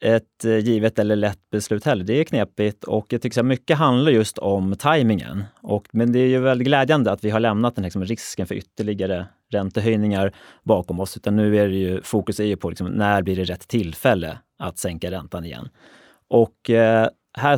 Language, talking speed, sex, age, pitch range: Swedish, 200 wpm, male, 30-49, 95-120 Hz